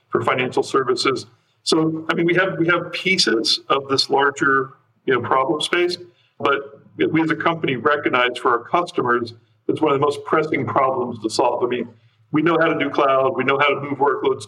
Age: 50-69